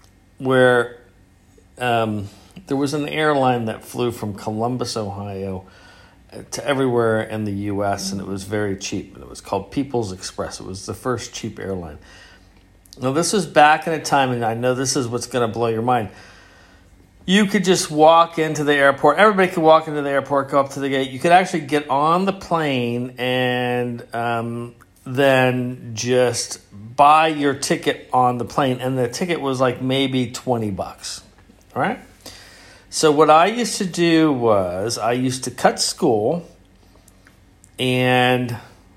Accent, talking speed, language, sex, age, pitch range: American, 165 wpm, English, male, 40-59, 105-140 Hz